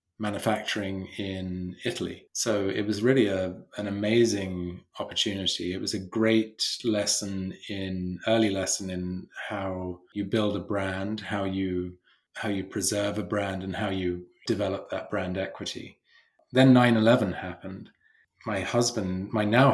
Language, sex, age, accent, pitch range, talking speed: English, male, 20-39, British, 95-110 Hz, 140 wpm